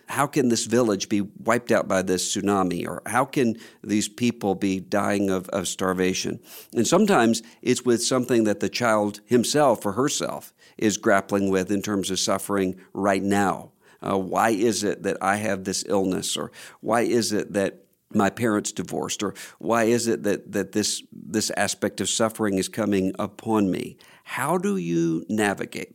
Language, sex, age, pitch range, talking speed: English, male, 50-69, 100-120 Hz, 175 wpm